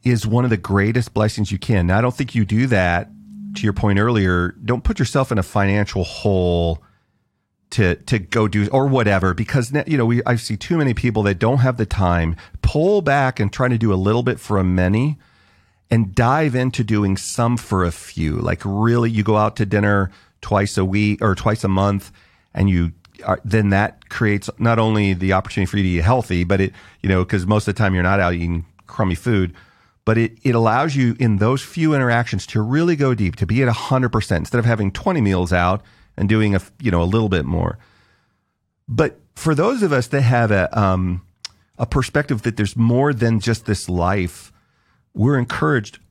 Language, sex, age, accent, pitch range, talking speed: English, male, 40-59, American, 95-120 Hz, 210 wpm